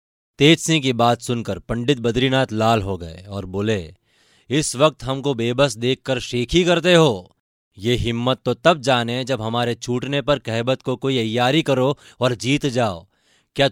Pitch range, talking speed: 115-145 Hz, 165 wpm